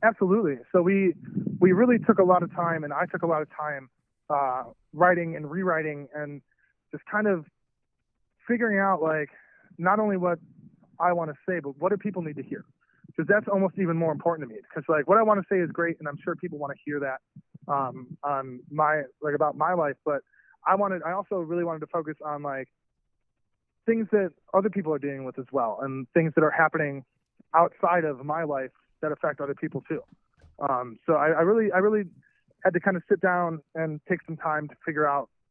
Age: 20-39